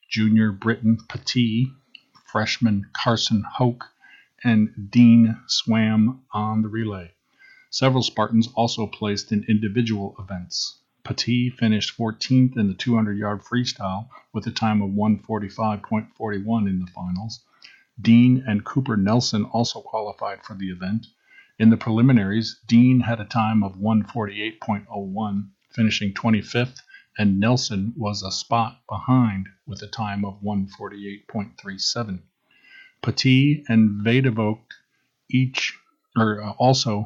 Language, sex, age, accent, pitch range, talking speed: English, male, 40-59, American, 105-120 Hz, 115 wpm